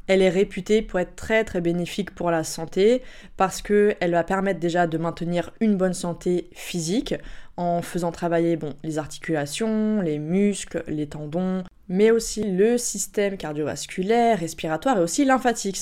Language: French